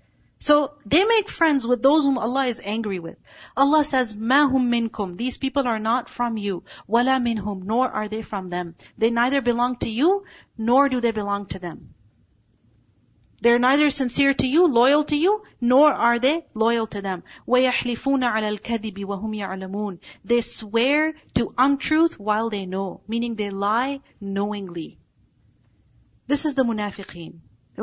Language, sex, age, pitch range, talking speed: English, female, 40-59, 200-280 Hz, 160 wpm